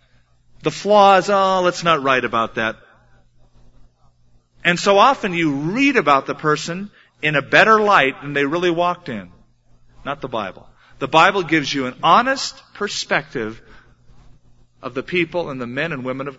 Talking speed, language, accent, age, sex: 160 wpm, English, American, 40-59, male